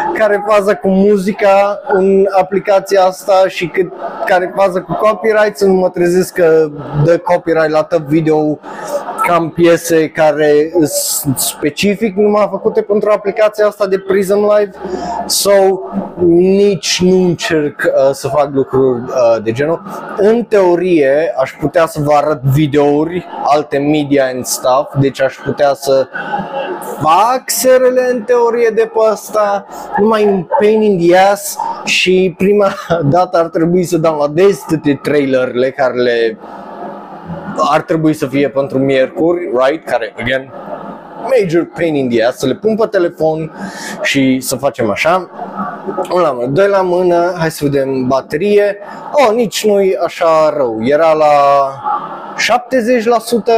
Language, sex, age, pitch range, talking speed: Romanian, male, 20-39, 145-200 Hz, 140 wpm